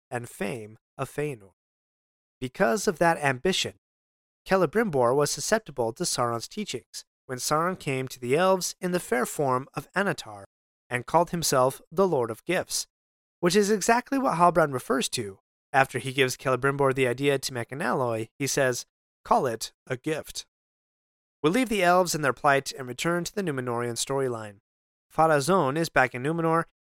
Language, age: English, 30-49